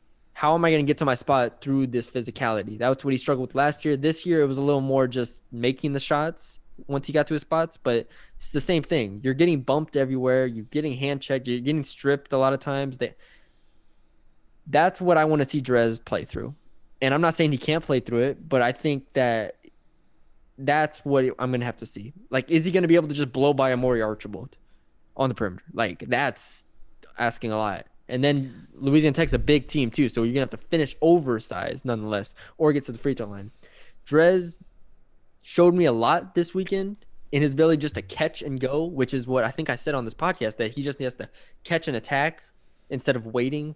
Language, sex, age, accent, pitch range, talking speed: English, male, 20-39, American, 120-150 Hz, 230 wpm